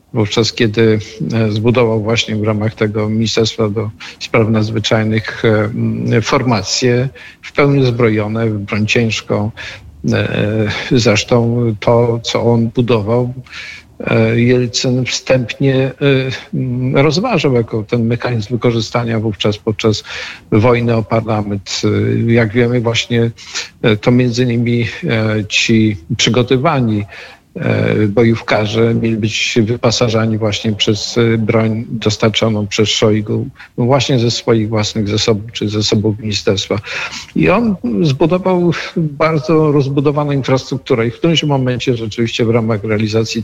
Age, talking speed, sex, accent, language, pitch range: 50-69, 105 wpm, male, native, Polish, 110-125 Hz